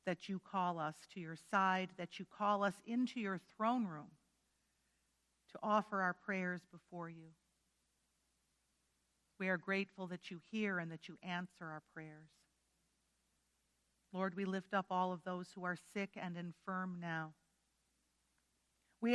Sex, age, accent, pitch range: female, 50-69, American, 170-195 Hz